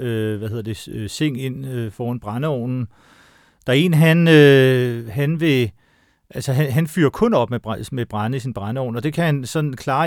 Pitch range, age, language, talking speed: 120-150 Hz, 40-59, Danish, 190 wpm